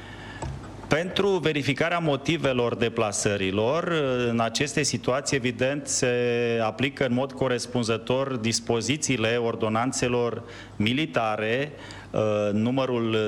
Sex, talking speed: male, 75 wpm